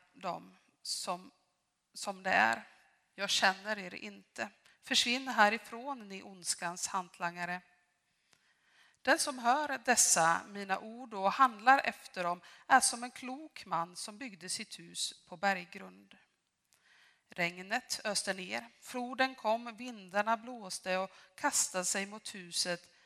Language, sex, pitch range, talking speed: Swedish, female, 180-225 Hz, 120 wpm